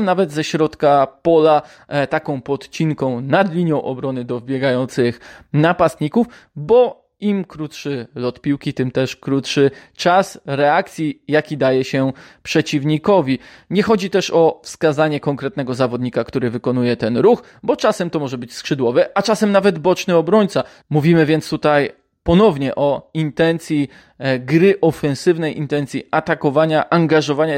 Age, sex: 20-39, male